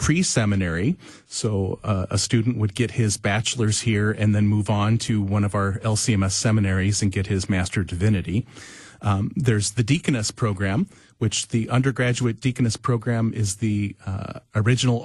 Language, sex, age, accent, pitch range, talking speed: English, male, 40-59, American, 105-125 Hz, 155 wpm